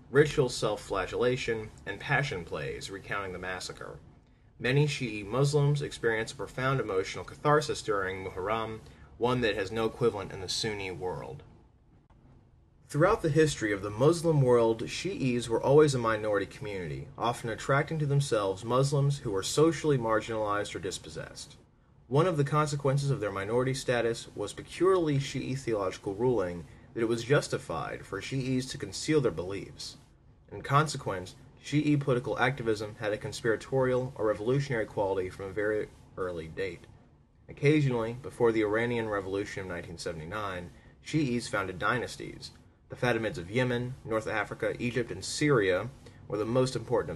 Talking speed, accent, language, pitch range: 145 wpm, American, English, 110-140 Hz